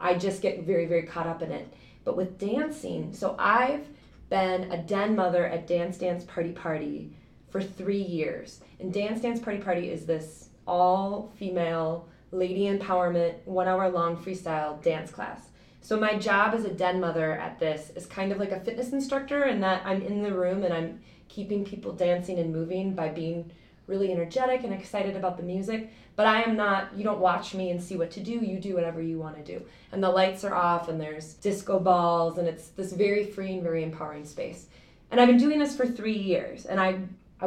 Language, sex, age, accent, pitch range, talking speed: English, female, 20-39, American, 175-215 Hz, 210 wpm